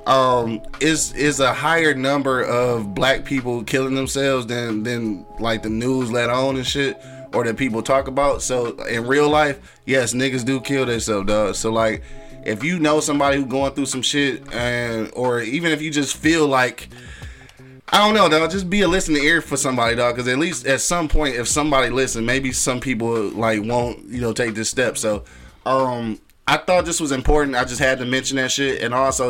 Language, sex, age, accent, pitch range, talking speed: English, male, 20-39, American, 115-135 Hz, 205 wpm